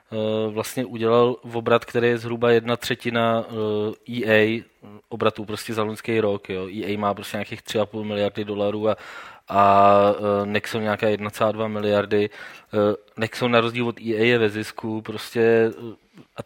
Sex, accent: male, native